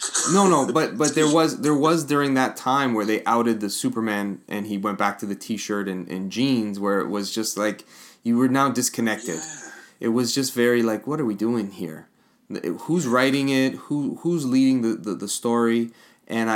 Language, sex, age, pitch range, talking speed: English, male, 20-39, 105-135 Hz, 205 wpm